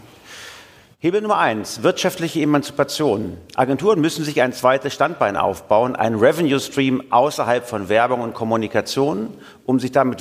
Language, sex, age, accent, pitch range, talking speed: German, male, 50-69, German, 115-140 Hz, 135 wpm